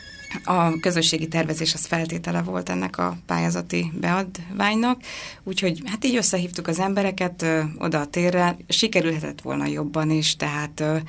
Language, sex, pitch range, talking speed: Hungarian, female, 155-170 Hz, 130 wpm